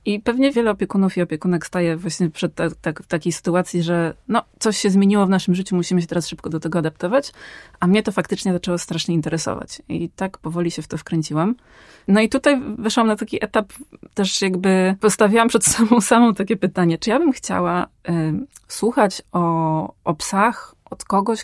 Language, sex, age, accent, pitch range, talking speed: Polish, female, 20-39, native, 170-220 Hz, 190 wpm